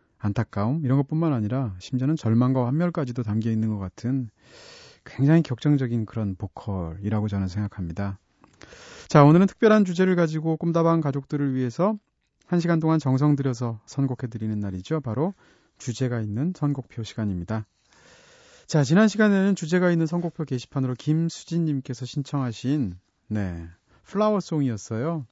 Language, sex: Korean, male